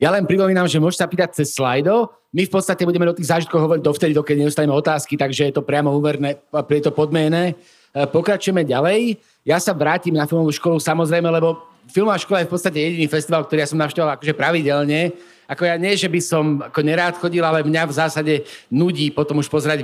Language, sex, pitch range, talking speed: Slovak, male, 150-175 Hz, 210 wpm